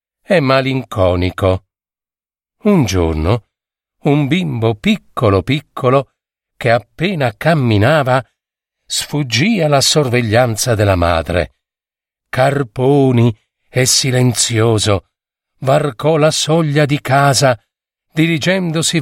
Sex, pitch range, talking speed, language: male, 105-155 Hz, 80 wpm, Italian